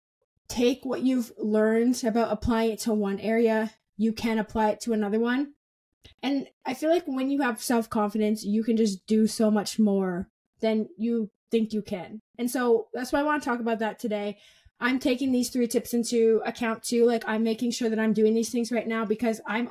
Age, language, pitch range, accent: 20-39, English, 210-240 Hz, American